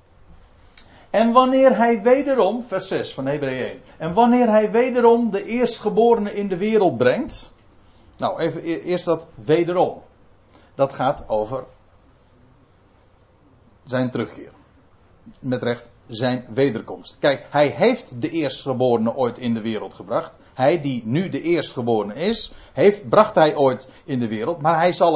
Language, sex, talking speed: Dutch, male, 140 wpm